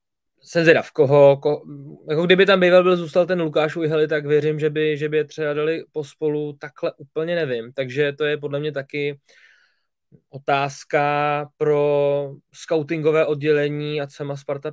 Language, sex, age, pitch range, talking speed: Czech, male, 20-39, 135-155 Hz, 155 wpm